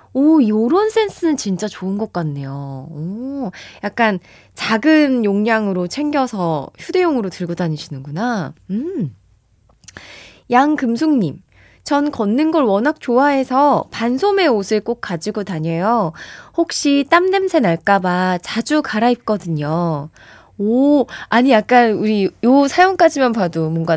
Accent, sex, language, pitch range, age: native, female, Korean, 170-265 Hz, 20-39